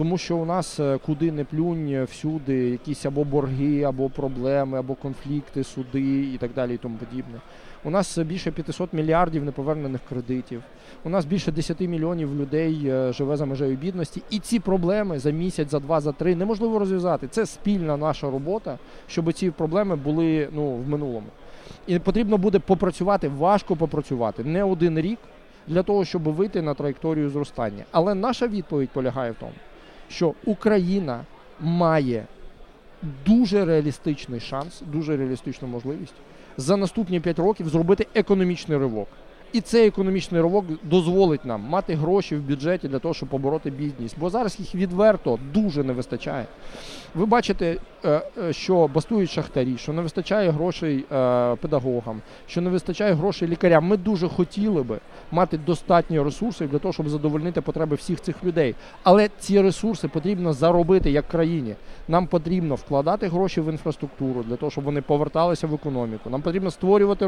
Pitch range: 140-185 Hz